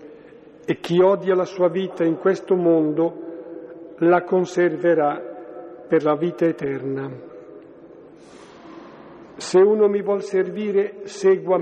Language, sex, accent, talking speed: Italian, male, native, 110 wpm